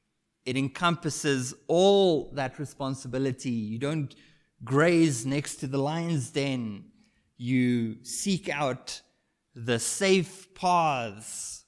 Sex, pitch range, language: male, 130-165 Hz, English